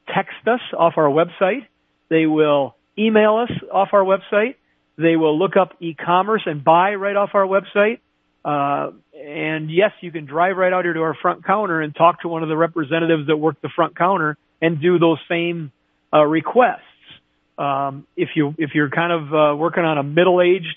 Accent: American